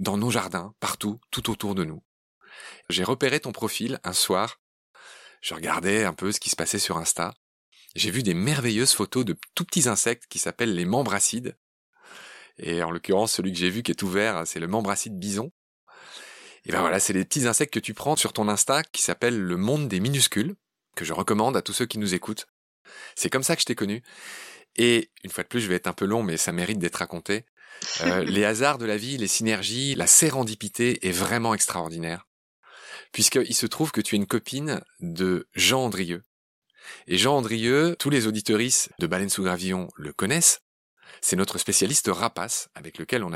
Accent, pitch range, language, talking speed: French, 95-120 Hz, French, 205 wpm